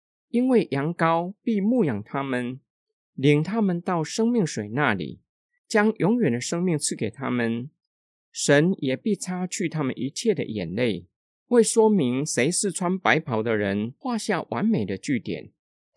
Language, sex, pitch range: Chinese, male, 130-210 Hz